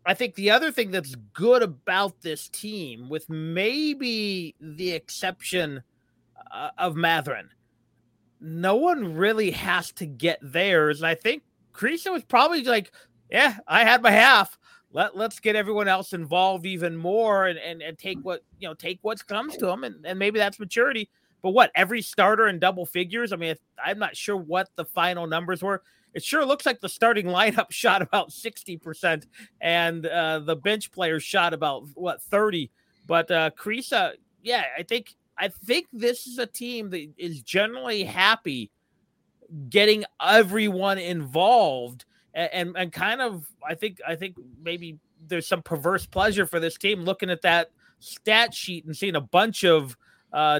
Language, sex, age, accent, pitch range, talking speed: English, male, 30-49, American, 165-215 Hz, 170 wpm